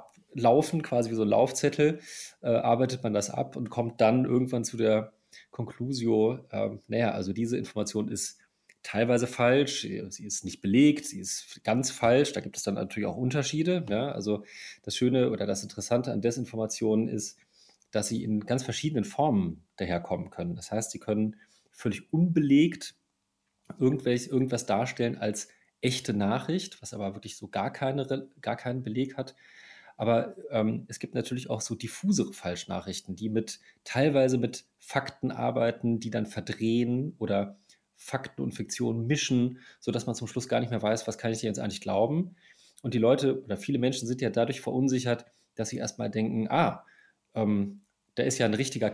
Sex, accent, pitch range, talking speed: male, German, 110-130 Hz, 165 wpm